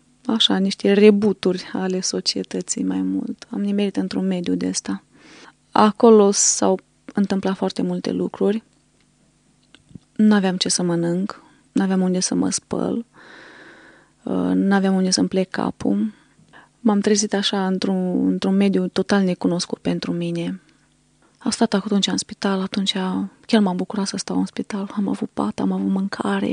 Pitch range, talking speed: 175-205 Hz, 145 wpm